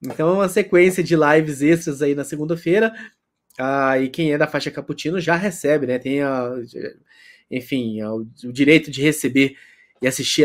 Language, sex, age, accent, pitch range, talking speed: Portuguese, male, 20-39, Brazilian, 140-200 Hz, 170 wpm